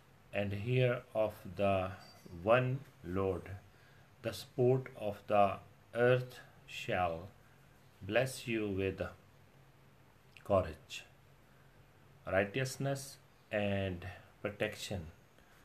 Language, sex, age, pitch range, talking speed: Punjabi, male, 40-59, 105-130 Hz, 75 wpm